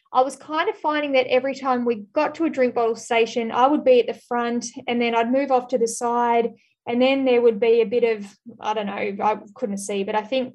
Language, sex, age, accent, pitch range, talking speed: English, female, 10-29, Australian, 230-265 Hz, 260 wpm